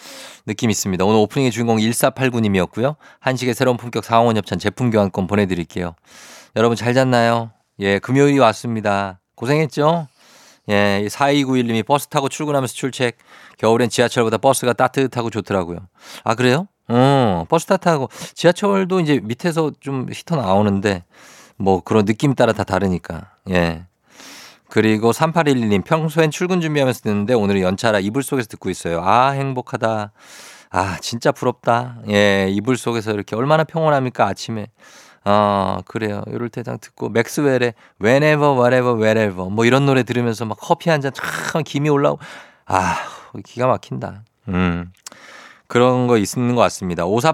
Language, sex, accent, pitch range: Korean, male, native, 105-135 Hz